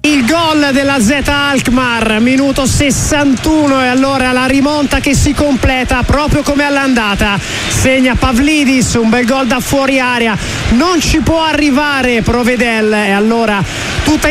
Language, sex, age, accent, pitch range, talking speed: Italian, male, 30-49, native, 225-275 Hz, 140 wpm